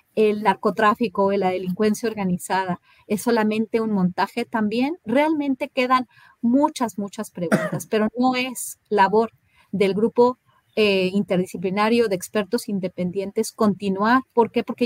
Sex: female